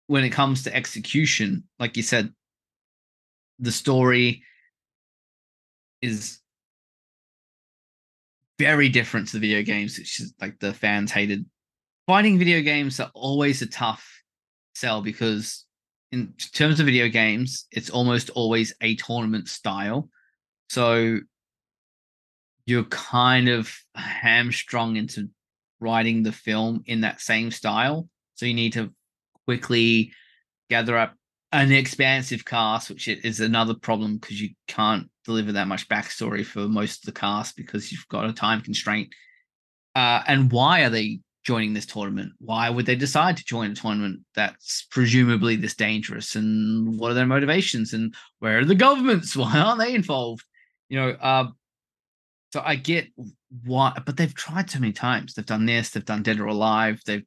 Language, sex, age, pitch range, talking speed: English, male, 20-39, 110-130 Hz, 150 wpm